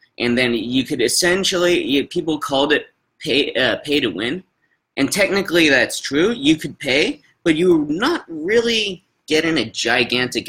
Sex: male